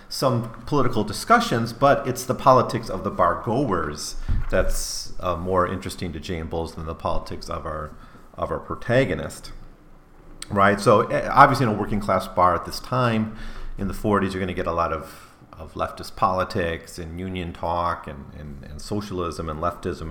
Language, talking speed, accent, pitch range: English, 175 wpm, American, 85-105 Hz